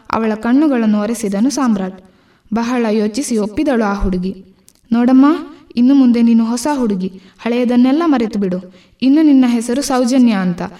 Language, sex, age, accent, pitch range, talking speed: Kannada, female, 20-39, native, 205-255 Hz, 120 wpm